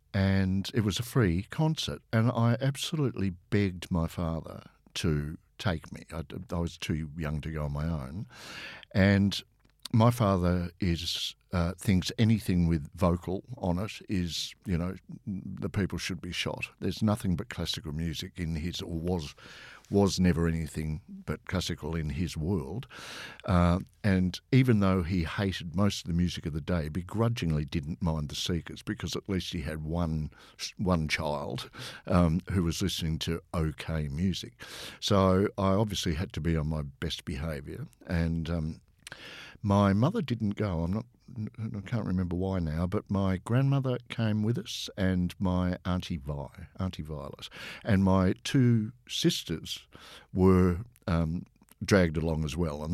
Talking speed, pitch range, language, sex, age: 160 wpm, 80-100 Hz, English, male, 60-79